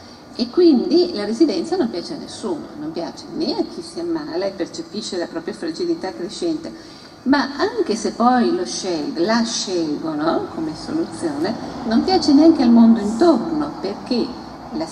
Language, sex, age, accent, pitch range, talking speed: Italian, female, 50-69, native, 250-330 Hz, 155 wpm